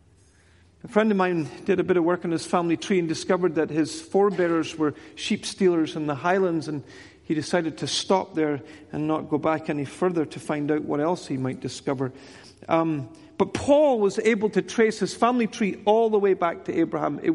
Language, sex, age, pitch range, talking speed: English, male, 40-59, 165-225 Hz, 210 wpm